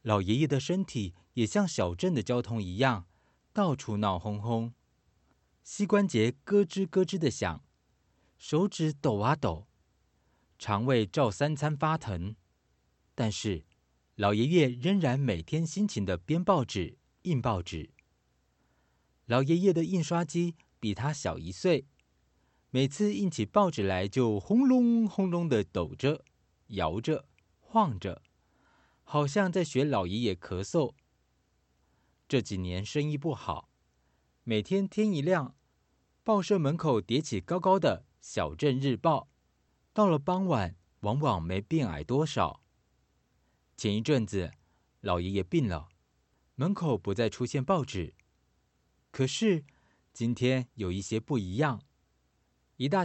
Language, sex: Chinese, male